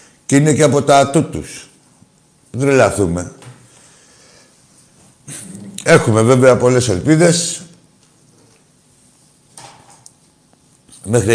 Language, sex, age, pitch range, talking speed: Greek, male, 60-79, 105-140 Hz, 65 wpm